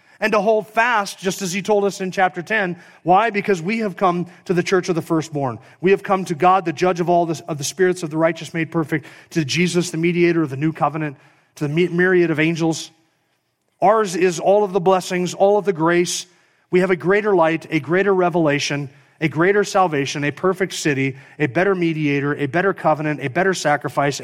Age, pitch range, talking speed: 40-59, 140-185 Hz, 215 wpm